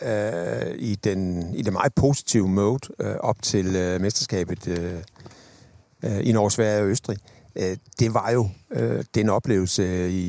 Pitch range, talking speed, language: 100-120 Hz, 135 wpm, Danish